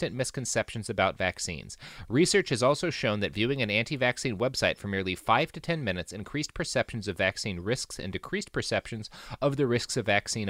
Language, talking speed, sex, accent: English, 175 wpm, male, American